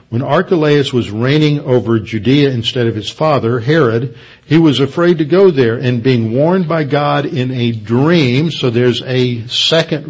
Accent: American